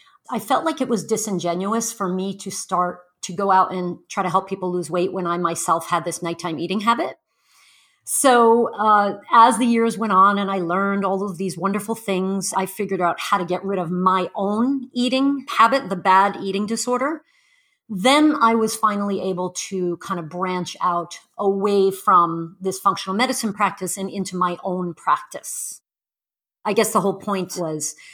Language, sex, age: English, female, 40-59